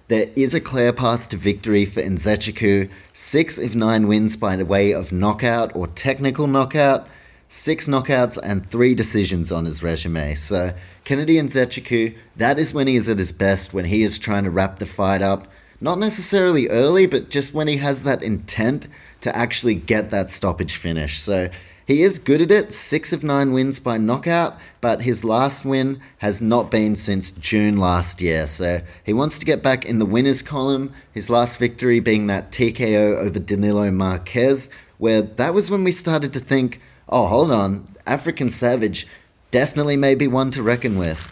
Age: 30-49